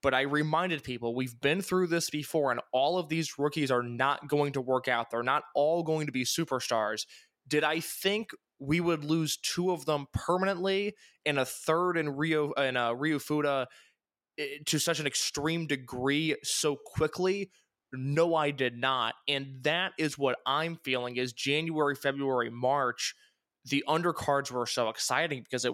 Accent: American